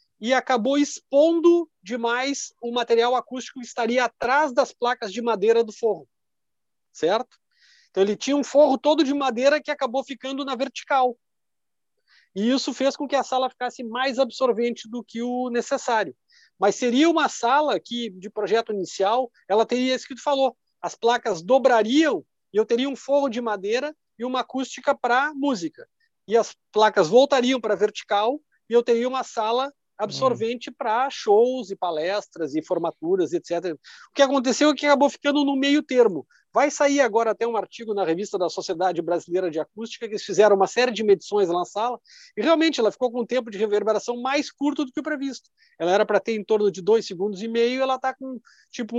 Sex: male